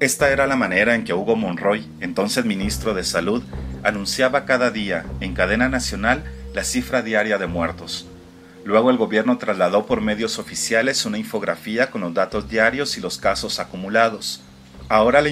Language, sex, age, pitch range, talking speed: Spanish, male, 40-59, 90-125 Hz, 165 wpm